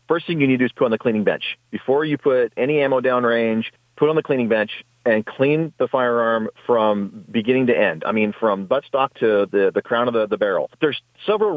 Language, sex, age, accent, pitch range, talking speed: English, male, 40-59, American, 110-160 Hz, 235 wpm